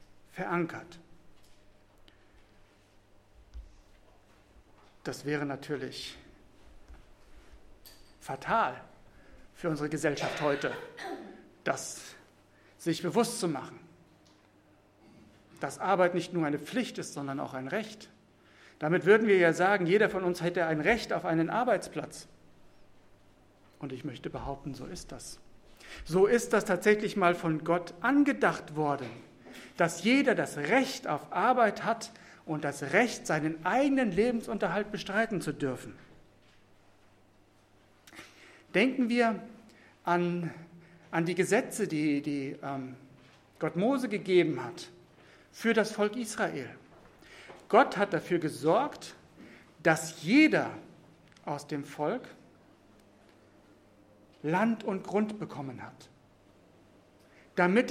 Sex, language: male, English